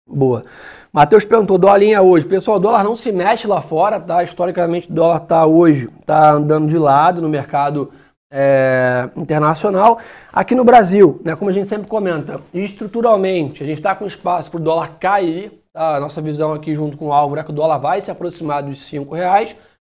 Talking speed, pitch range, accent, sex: 195 wpm, 165-215 Hz, Brazilian, male